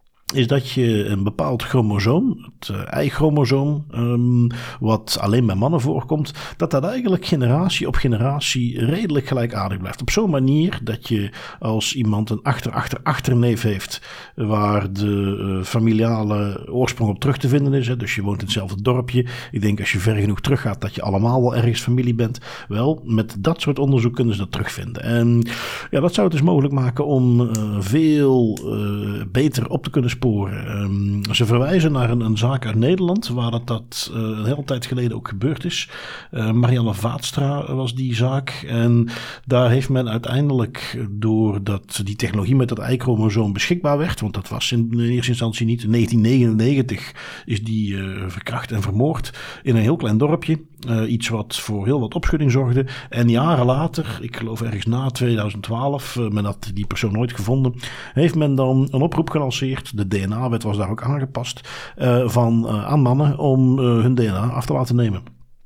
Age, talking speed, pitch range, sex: 50-69, 185 wpm, 110-135 Hz, male